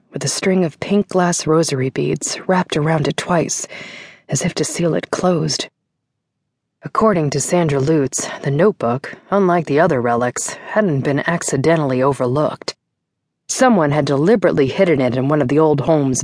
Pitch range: 145-200 Hz